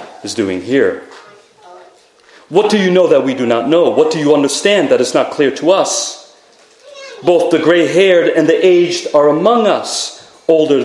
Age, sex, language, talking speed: 40-59, male, English, 175 wpm